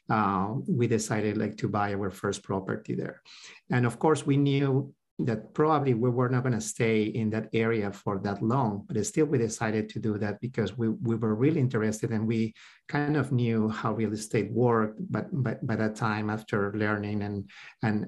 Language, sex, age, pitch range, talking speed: English, male, 50-69, 105-115 Hz, 200 wpm